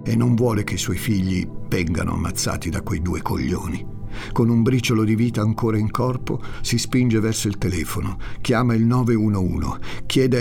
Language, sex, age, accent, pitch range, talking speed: Italian, male, 50-69, native, 90-115 Hz, 175 wpm